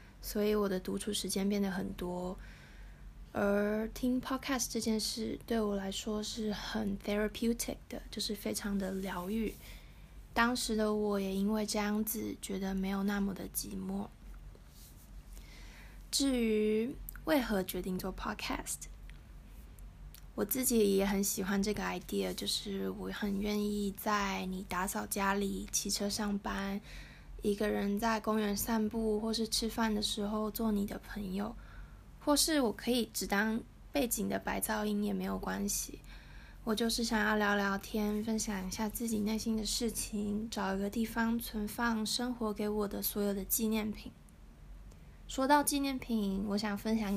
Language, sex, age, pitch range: Chinese, female, 20-39, 200-225 Hz